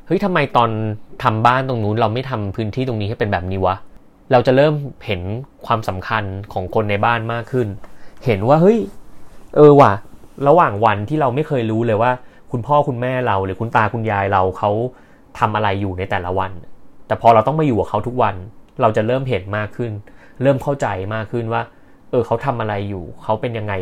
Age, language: 20-39, Thai